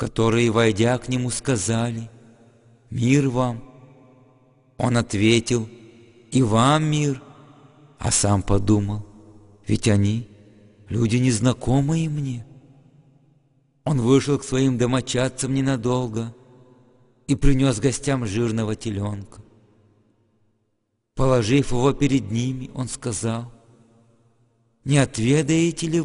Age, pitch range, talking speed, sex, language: 50-69, 115-140 Hz, 90 wpm, male, English